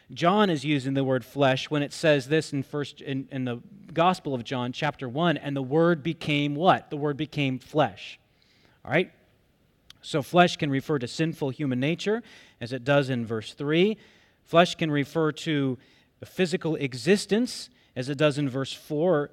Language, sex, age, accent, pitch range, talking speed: English, male, 30-49, American, 135-160 Hz, 175 wpm